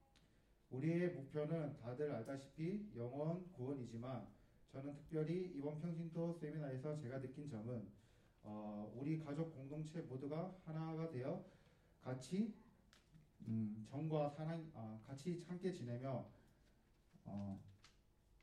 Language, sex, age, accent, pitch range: Korean, male, 40-59, native, 120-160 Hz